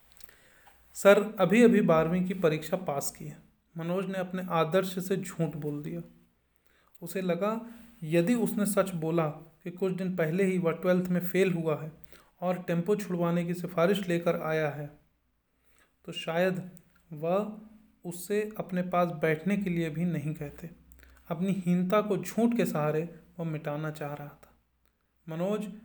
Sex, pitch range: male, 160-200 Hz